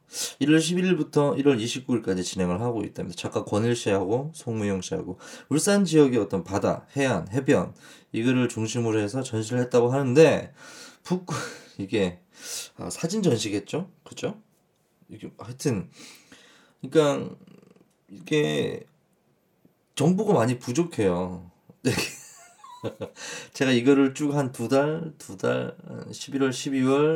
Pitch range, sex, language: 105-160 Hz, male, Korean